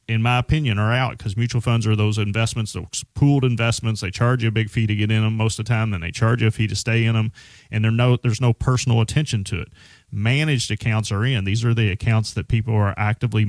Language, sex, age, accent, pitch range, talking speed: English, male, 30-49, American, 105-120 Hz, 255 wpm